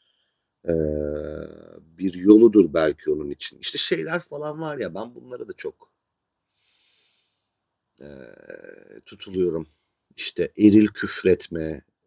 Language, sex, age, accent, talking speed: Turkish, male, 40-59, native, 100 wpm